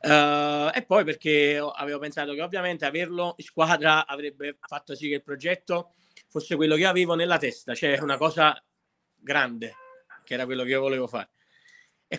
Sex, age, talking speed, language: male, 30-49, 165 wpm, Italian